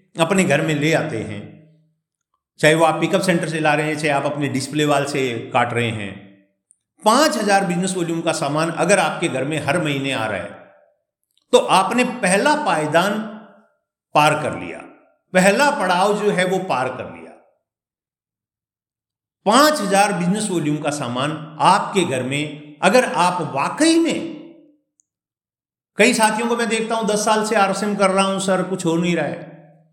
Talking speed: 170 wpm